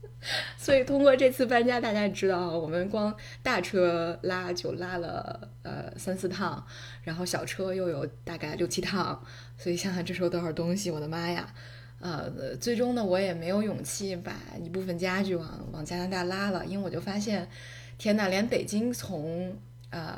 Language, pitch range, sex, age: Chinese, 155-190 Hz, female, 20-39